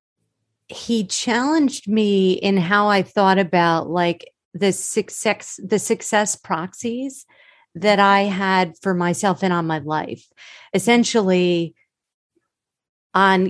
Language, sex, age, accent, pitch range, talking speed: English, female, 40-59, American, 175-210 Hz, 110 wpm